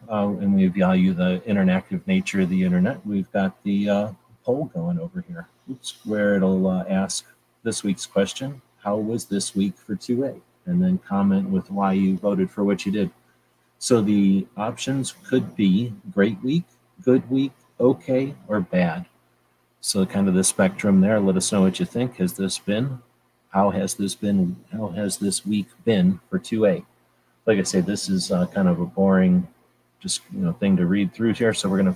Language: English